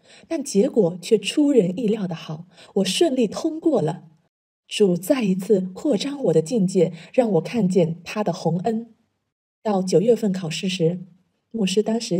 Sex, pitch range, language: female, 170-225 Hz, Chinese